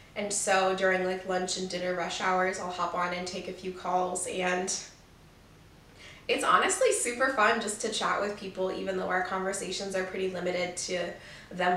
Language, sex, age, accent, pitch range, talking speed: English, female, 20-39, American, 180-205 Hz, 185 wpm